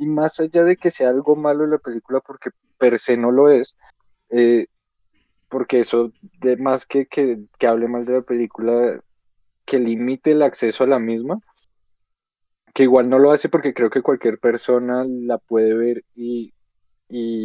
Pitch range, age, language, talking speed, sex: 115-130 Hz, 20-39, Spanish, 175 wpm, male